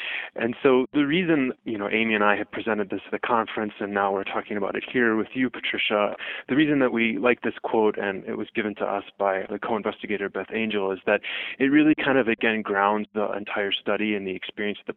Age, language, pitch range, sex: 20-39, English, 100-115 Hz, male